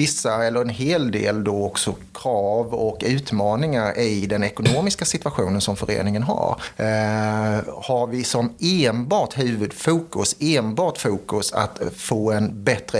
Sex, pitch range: male, 105-125 Hz